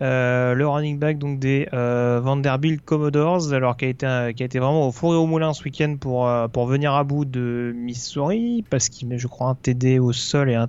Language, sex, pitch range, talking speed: French, male, 135-170 Hz, 245 wpm